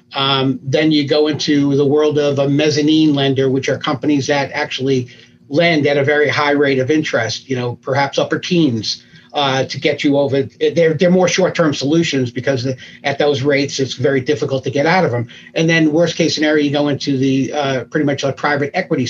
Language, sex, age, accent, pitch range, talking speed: English, male, 50-69, American, 135-155 Hz, 215 wpm